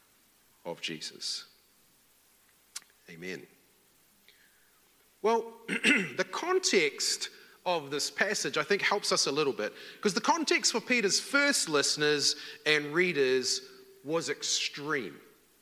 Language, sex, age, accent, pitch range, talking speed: English, male, 40-59, Australian, 175-280 Hz, 105 wpm